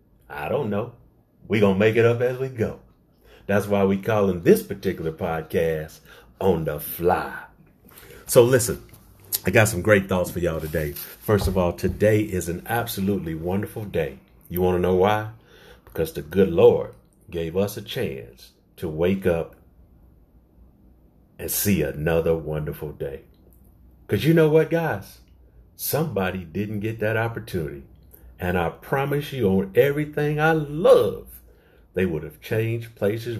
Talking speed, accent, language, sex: 155 wpm, American, English, male